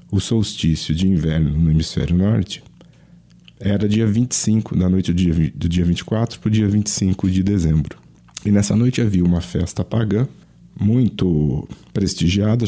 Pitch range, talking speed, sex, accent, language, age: 85-115 Hz, 140 wpm, male, Brazilian, Portuguese, 40-59